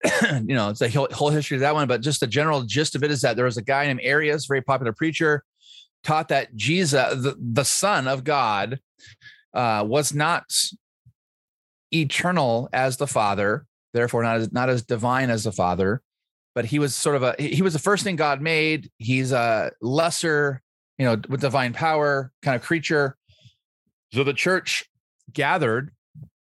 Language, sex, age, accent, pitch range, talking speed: English, male, 30-49, American, 110-145 Hz, 180 wpm